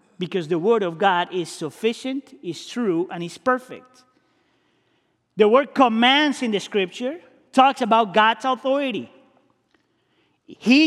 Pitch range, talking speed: 185-275 Hz, 125 wpm